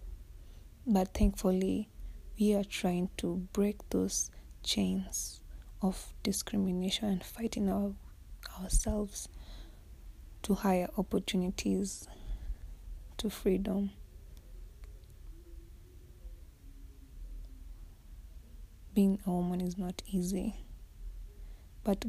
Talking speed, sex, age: 75 wpm, female, 20-39